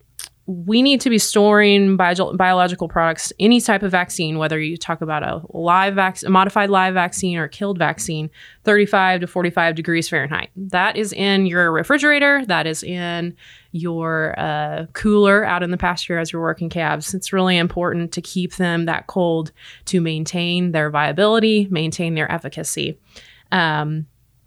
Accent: American